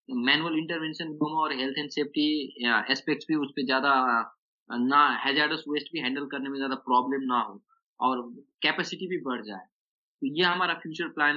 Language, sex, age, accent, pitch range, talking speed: Hindi, male, 20-39, native, 130-165 Hz, 180 wpm